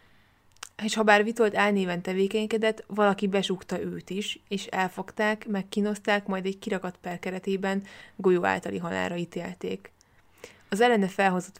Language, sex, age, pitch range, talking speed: Hungarian, female, 20-39, 175-205 Hz, 125 wpm